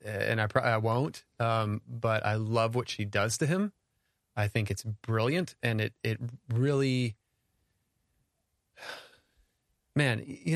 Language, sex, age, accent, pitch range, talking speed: English, male, 30-49, American, 110-135 Hz, 135 wpm